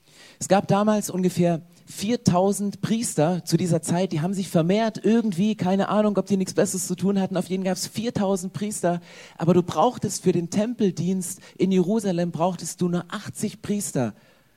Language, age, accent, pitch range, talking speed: German, 40-59, German, 170-205 Hz, 175 wpm